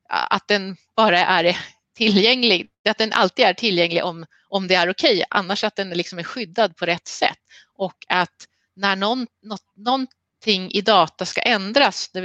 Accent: native